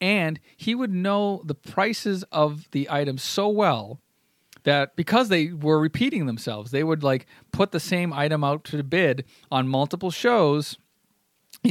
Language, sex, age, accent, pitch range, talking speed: English, male, 40-59, American, 130-170 Hz, 160 wpm